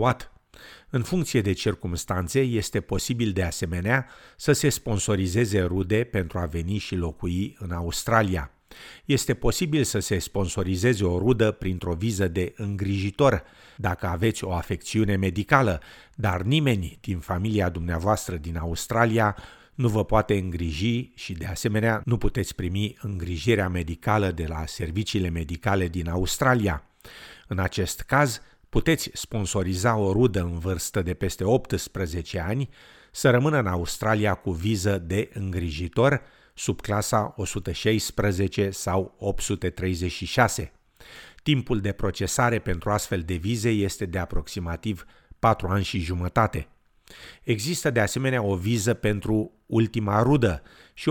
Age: 50-69